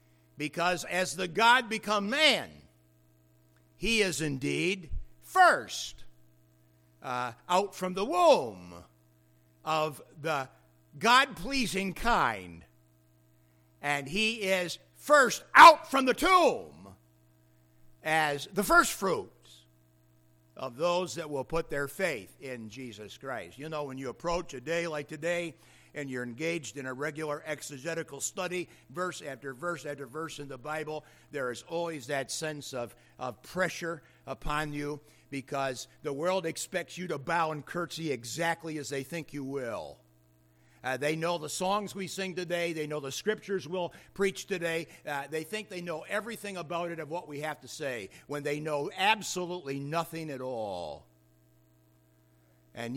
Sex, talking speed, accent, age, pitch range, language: male, 145 wpm, American, 60-79, 120-180 Hz, English